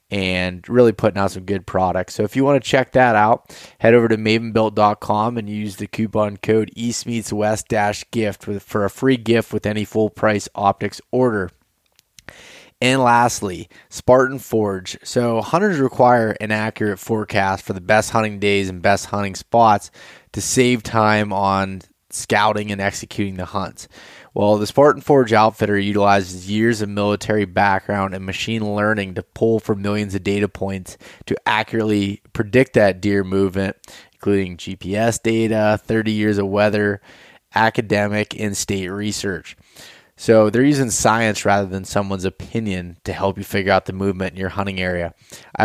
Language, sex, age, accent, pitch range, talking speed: English, male, 20-39, American, 100-110 Hz, 160 wpm